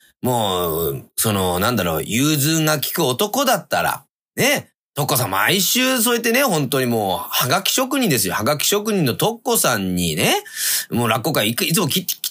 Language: Japanese